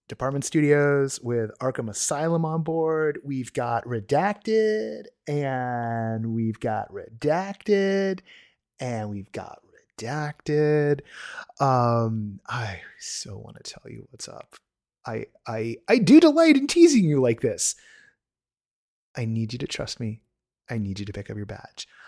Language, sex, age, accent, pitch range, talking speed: English, male, 30-49, American, 115-160 Hz, 140 wpm